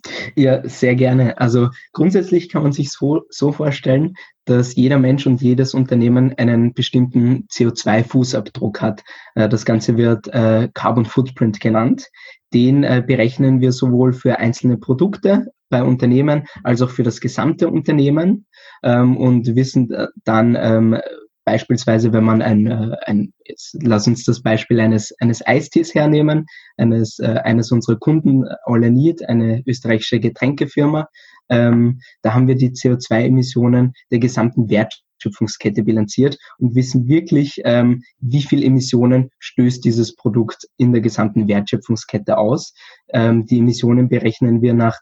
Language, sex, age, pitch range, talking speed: German, male, 20-39, 115-130 Hz, 130 wpm